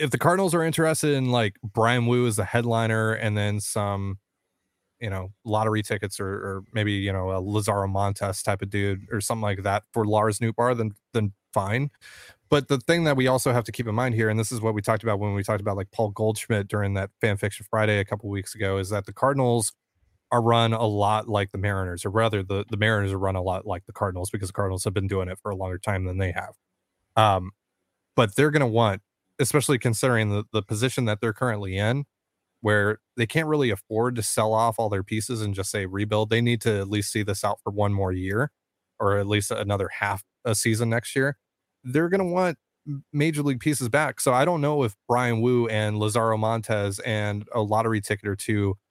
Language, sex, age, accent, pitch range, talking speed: English, male, 20-39, American, 100-115 Hz, 230 wpm